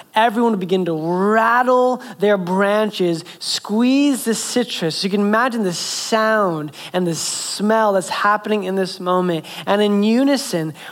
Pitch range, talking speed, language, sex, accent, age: 175-230 Hz, 145 wpm, English, male, American, 20-39